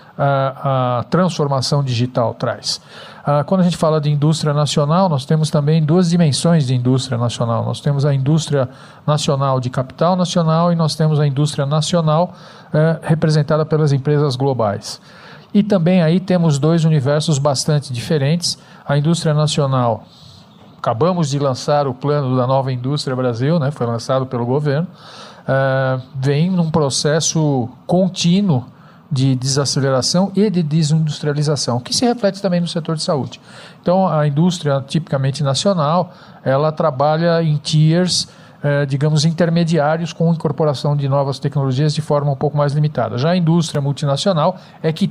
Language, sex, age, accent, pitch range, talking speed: Portuguese, male, 50-69, Brazilian, 135-165 Hz, 140 wpm